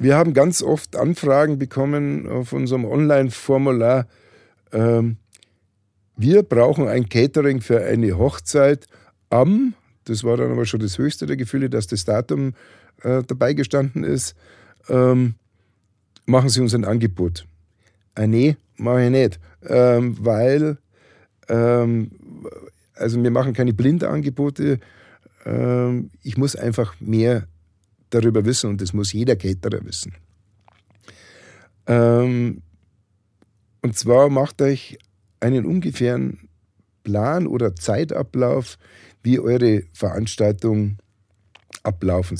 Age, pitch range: 50-69, 105-125 Hz